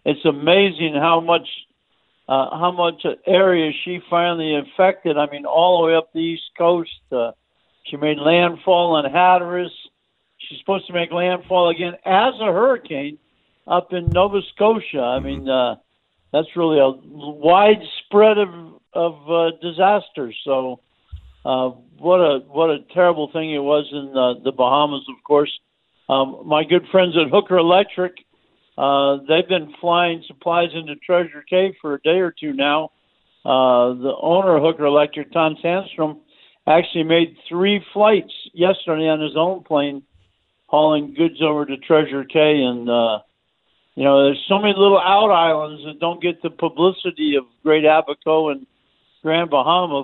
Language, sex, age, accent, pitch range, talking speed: English, male, 60-79, American, 145-180 Hz, 155 wpm